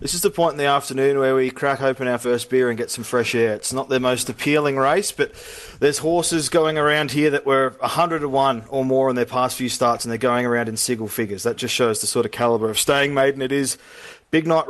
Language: English